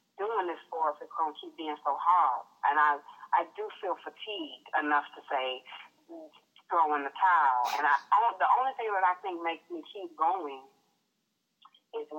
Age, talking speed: 40-59, 185 wpm